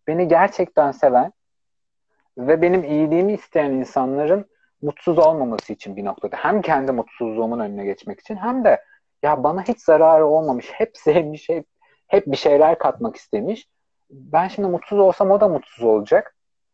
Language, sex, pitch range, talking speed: Turkish, male, 125-180 Hz, 150 wpm